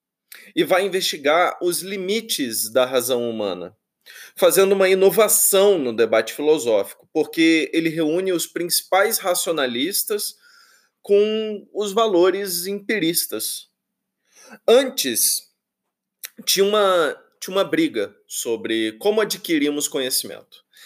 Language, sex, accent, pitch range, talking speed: Portuguese, male, Brazilian, 125-205 Hz, 95 wpm